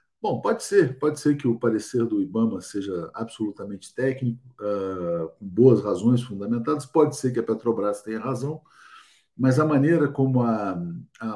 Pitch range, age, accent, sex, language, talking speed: 115-150 Hz, 50-69, Brazilian, male, Portuguese, 165 wpm